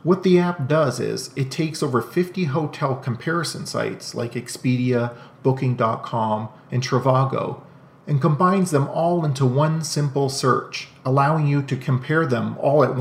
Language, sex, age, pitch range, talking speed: English, male, 40-59, 130-155 Hz, 150 wpm